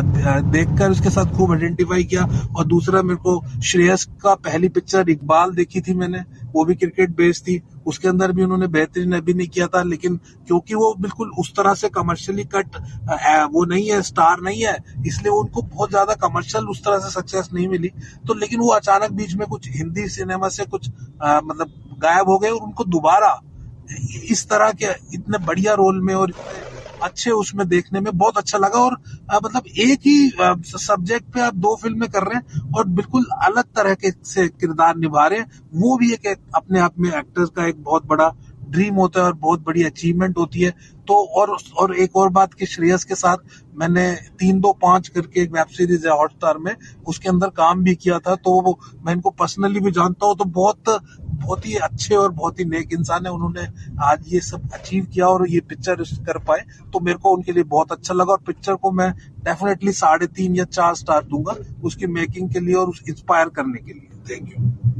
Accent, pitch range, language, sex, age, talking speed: native, 160-195 Hz, Hindi, male, 30-49, 160 wpm